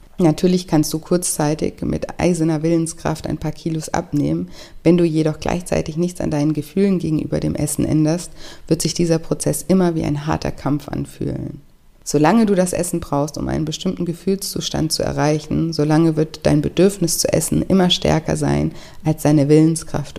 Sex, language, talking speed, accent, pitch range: female, German, 165 wpm, German, 150-170 Hz